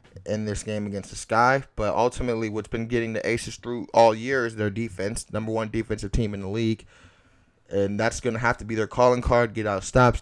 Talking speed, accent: 235 wpm, American